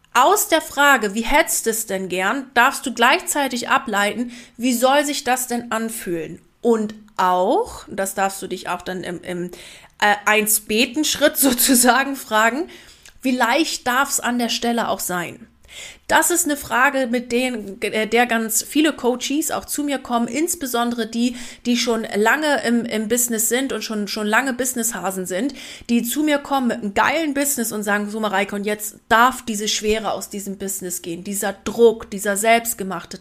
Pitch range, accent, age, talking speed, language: 200-245 Hz, German, 30-49, 170 wpm, German